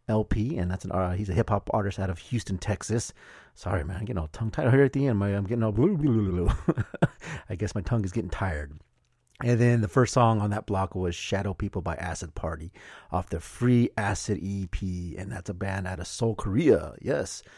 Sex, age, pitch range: male, 30-49, 90-110 Hz